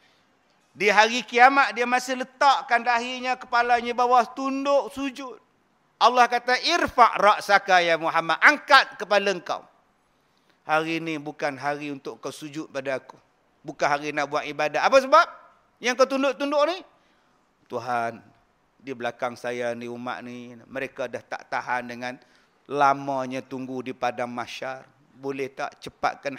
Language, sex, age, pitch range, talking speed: Malay, male, 50-69, 130-180 Hz, 135 wpm